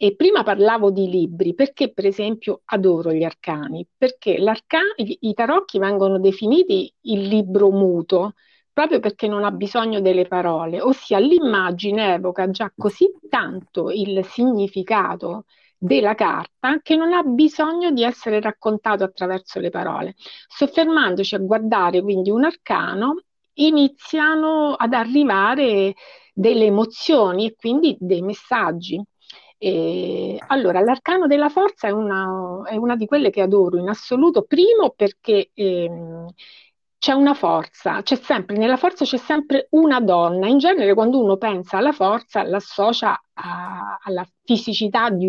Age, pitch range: 50-69, 195-290 Hz